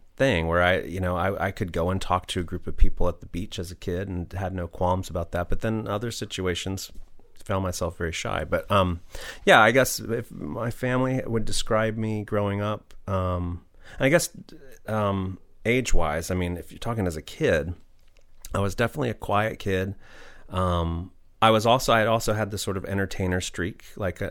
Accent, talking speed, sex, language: American, 205 wpm, male, English